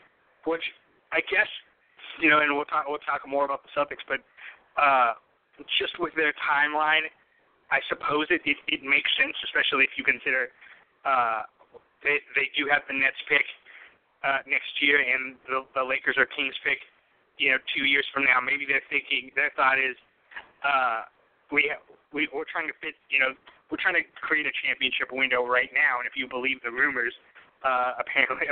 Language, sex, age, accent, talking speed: English, male, 30-49, American, 185 wpm